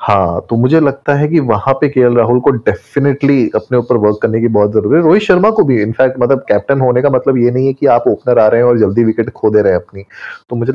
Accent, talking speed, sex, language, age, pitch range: native, 275 wpm, male, Hindi, 30-49, 110-140 Hz